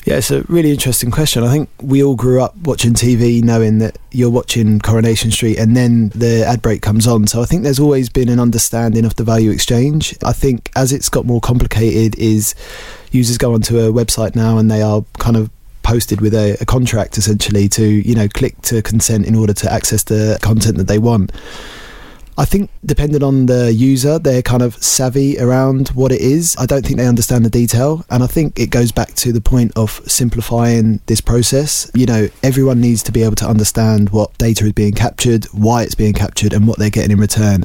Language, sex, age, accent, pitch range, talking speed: English, male, 20-39, British, 110-125 Hz, 220 wpm